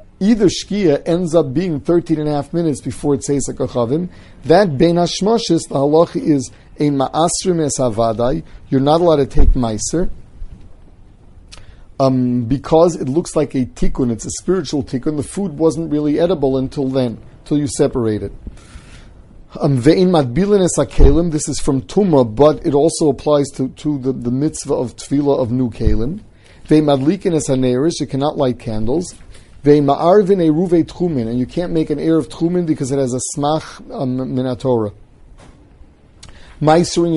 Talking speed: 150 wpm